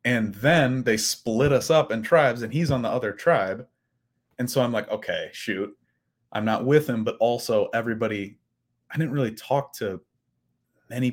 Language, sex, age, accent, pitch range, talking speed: English, male, 30-49, American, 105-130 Hz, 180 wpm